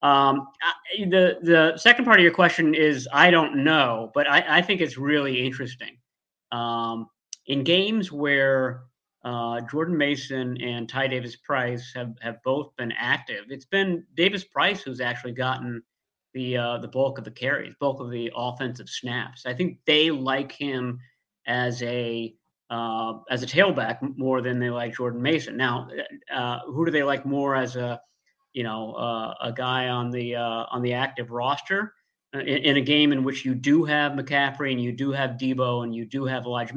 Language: English